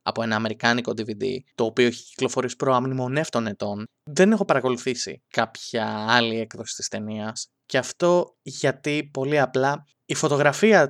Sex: male